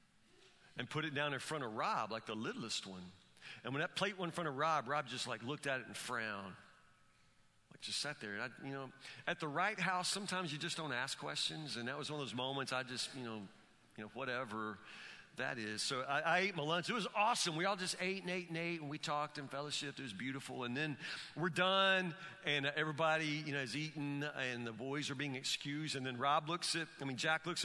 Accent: American